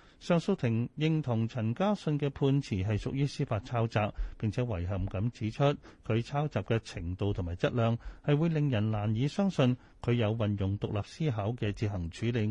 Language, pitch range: Chinese, 105-145 Hz